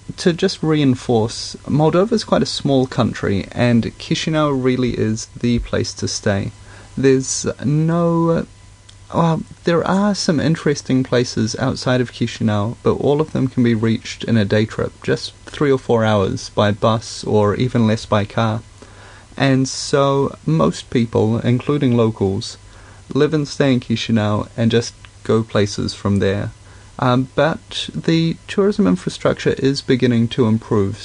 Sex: male